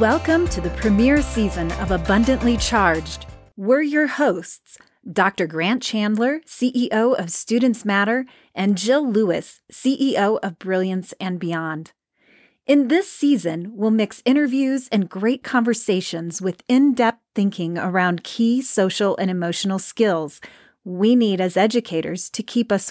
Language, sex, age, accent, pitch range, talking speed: English, female, 30-49, American, 185-240 Hz, 135 wpm